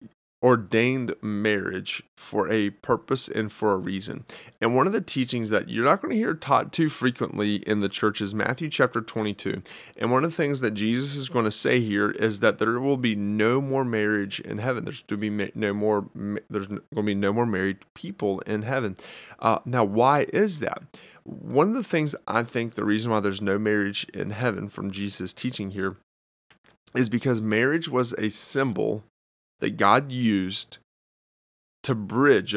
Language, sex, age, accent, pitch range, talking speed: English, male, 30-49, American, 100-120 Hz, 185 wpm